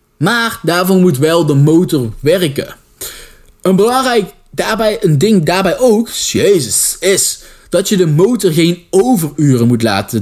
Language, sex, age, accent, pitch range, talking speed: Dutch, male, 20-39, Dutch, 140-210 Hz, 140 wpm